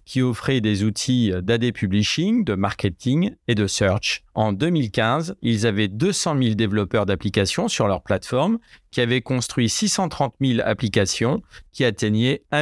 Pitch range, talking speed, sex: 105-140 Hz, 145 wpm, male